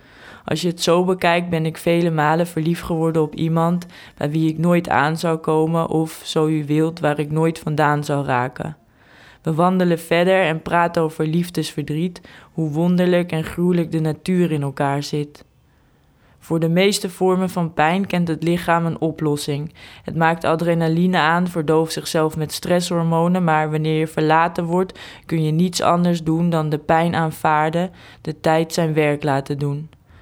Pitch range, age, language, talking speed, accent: 155-170 Hz, 20-39, Dutch, 170 wpm, Dutch